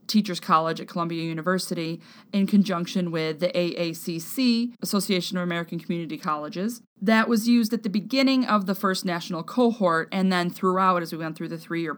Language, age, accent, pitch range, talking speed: English, 30-49, American, 175-220 Hz, 175 wpm